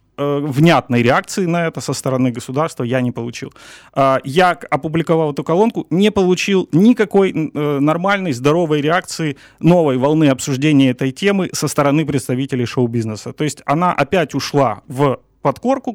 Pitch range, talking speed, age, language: 130-175 Hz, 135 wpm, 30-49, Ukrainian